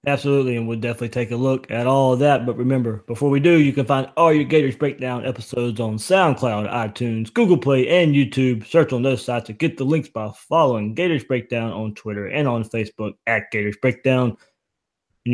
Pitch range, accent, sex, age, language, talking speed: 120-145 Hz, American, male, 20-39, English, 205 wpm